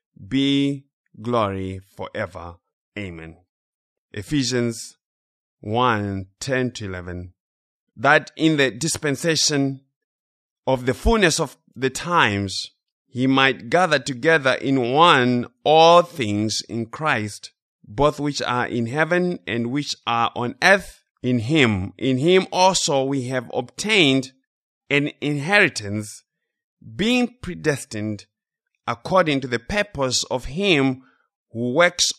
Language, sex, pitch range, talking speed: English, male, 110-150 Hz, 110 wpm